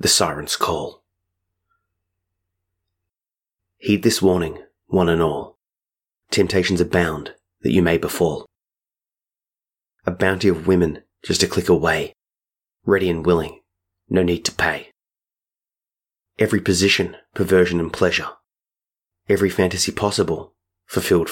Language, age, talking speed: English, 30-49, 110 wpm